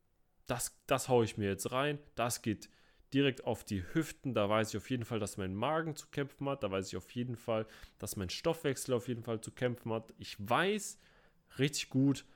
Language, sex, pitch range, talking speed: German, male, 105-135 Hz, 215 wpm